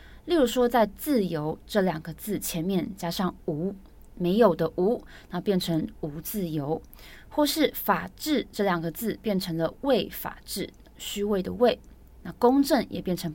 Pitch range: 170-215 Hz